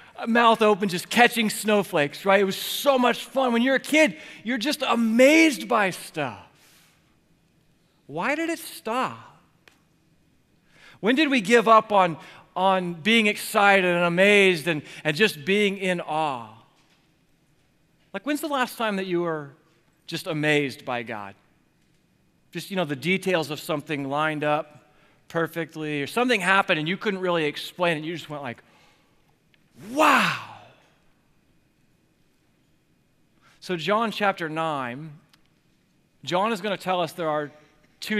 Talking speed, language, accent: 145 wpm, English, American